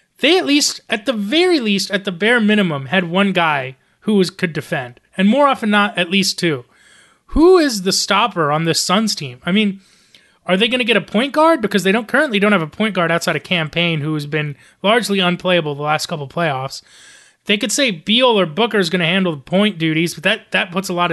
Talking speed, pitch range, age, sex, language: 240 wpm, 170-215 Hz, 30-49, male, English